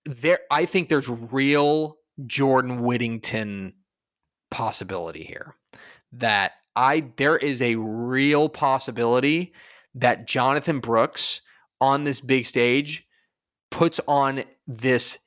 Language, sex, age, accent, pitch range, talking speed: English, male, 30-49, American, 120-145 Hz, 100 wpm